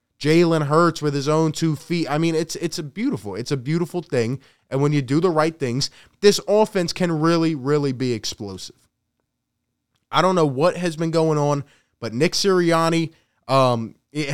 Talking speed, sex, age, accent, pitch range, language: 185 wpm, male, 20-39, American, 135-170 Hz, English